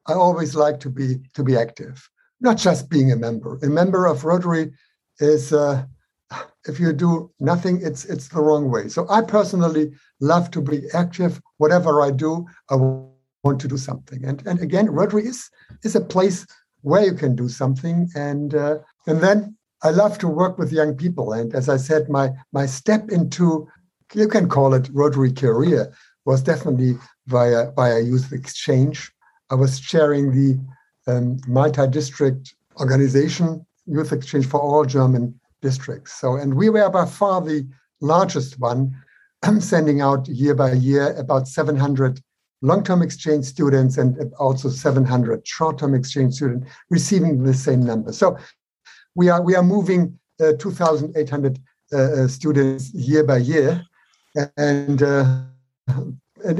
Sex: male